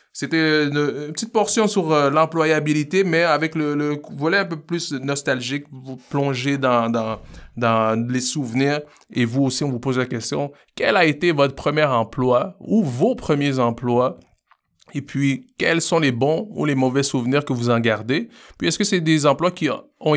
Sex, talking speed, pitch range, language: male, 185 wpm, 125-150 Hz, French